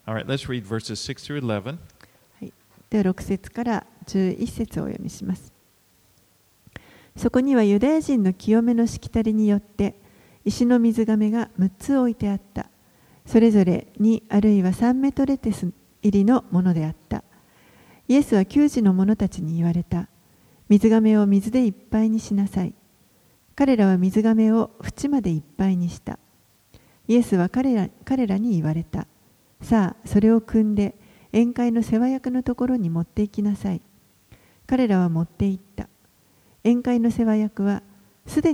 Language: Japanese